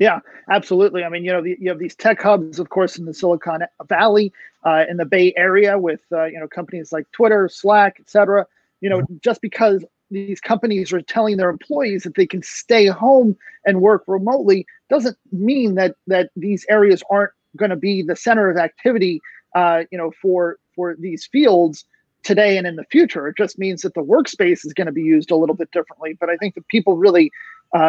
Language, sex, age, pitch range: English, male, 30-49, 175-210 Hz